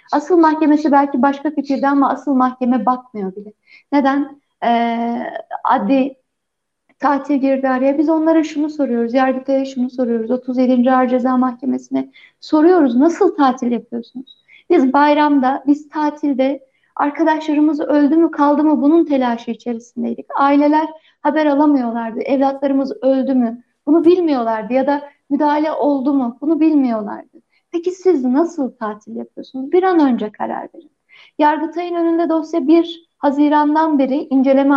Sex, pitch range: female, 250-315 Hz